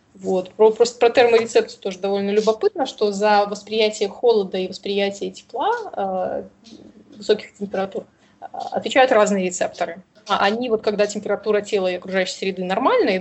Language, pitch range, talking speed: Russian, 190-225 Hz, 135 wpm